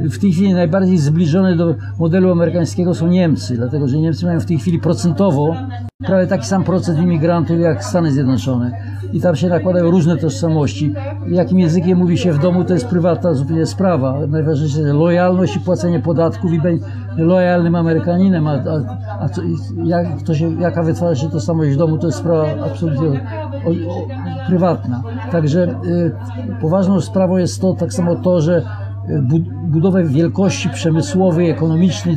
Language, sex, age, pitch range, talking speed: Polish, male, 60-79, 150-180 Hz, 165 wpm